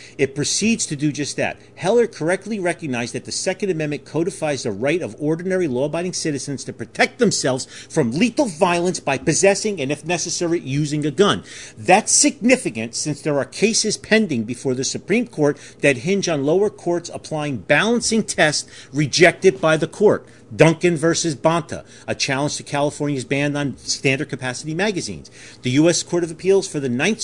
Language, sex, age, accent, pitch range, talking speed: English, male, 40-59, American, 120-175 Hz, 170 wpm